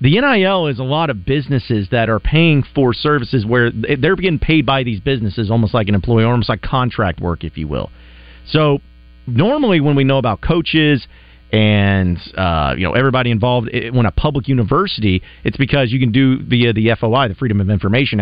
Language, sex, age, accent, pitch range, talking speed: English, male, 40-59, American, 100-135 Hz, 200 wpm